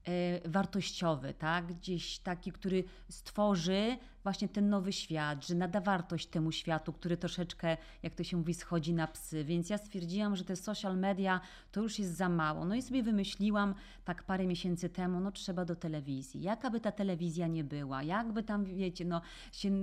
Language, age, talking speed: Polish, 30-49, 175 wpm